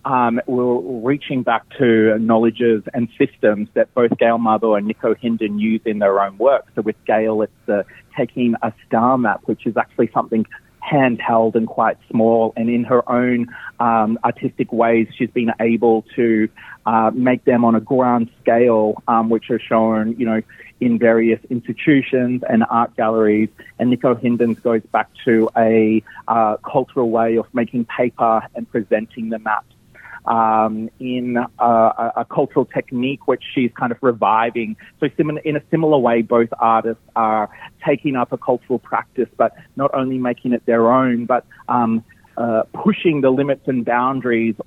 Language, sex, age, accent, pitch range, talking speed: English, male, 30-49, Australian, 115-125 Hz, 165 wpm